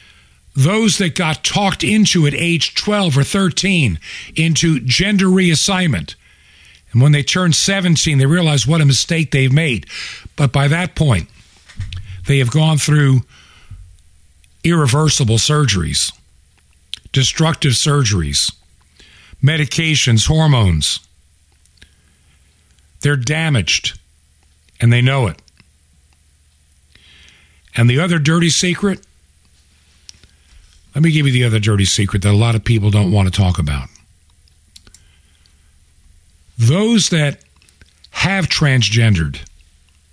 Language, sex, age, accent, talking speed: English, male, 50-69, American, 110 wpm